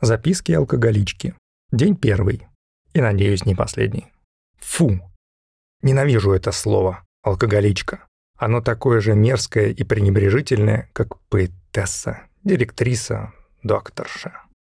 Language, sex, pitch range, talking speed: Russian, male, 100-130 Hz, 95 wpm